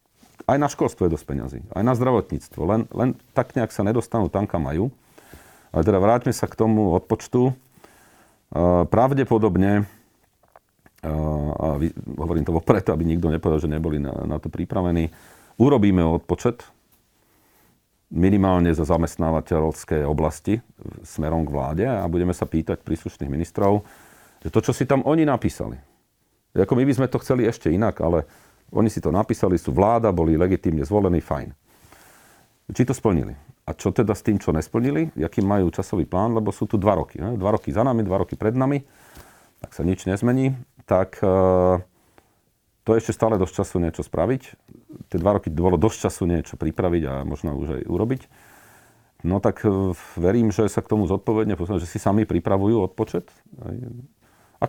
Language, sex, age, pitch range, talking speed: Slovak, male, 40-59, 85-115 Hz, 165 wpm